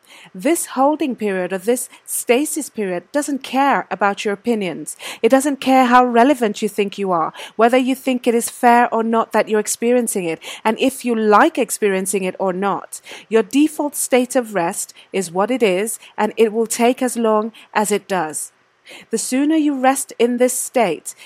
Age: 30-49